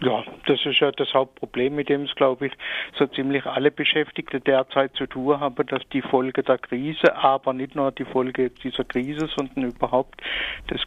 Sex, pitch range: male, 125-135 Hz